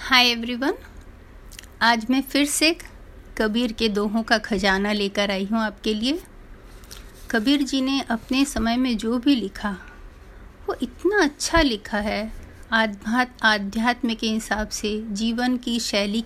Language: Hindi